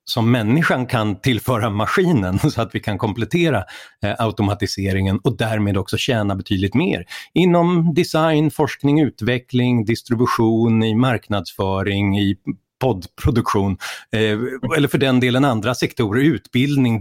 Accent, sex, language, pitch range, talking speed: native, male, Swedish, 100-135 Hz, 125 wpm